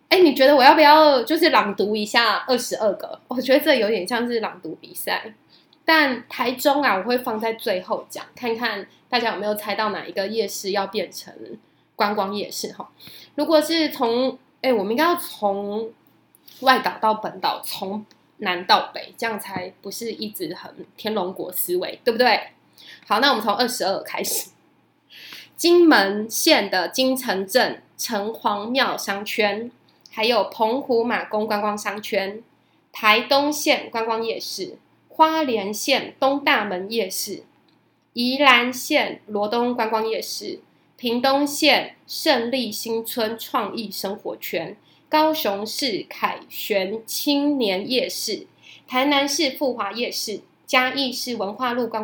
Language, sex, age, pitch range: Chinese, female, 20-39, 210-275 Hz